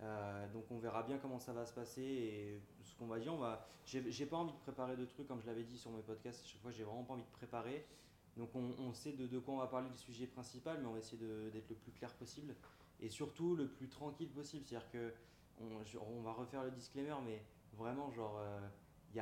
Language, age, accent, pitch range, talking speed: French, 20-39, French, 110-130 Hz, 270 wpm